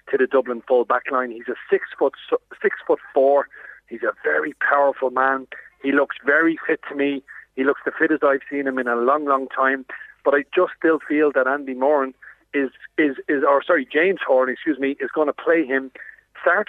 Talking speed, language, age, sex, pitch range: 210 wpm, English, 40-59, male, 135-165 Hz